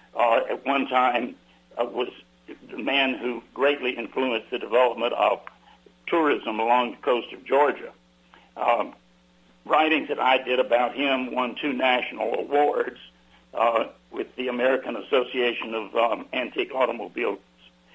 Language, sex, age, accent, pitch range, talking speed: English, male, 60-79, American, 110-150 Hz, 135 wpm